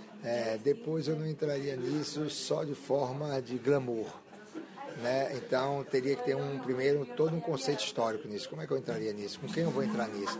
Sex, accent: male, Brazilian